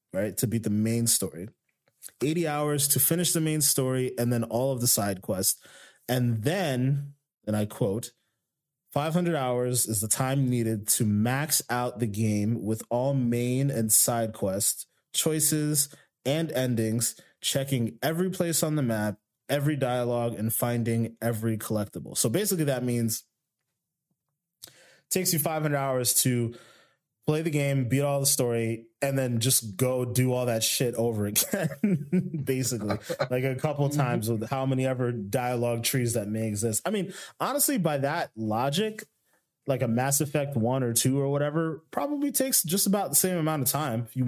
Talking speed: 165 wpm